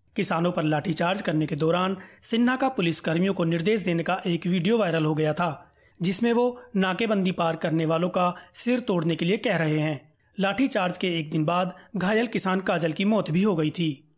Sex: male